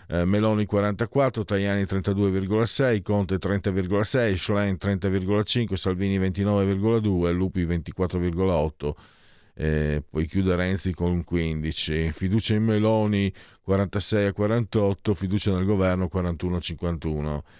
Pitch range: 80-105 Hz